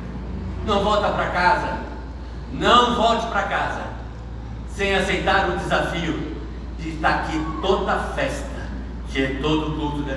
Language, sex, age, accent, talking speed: Portuguese, male, 60-79, Brazilian, 140 wpm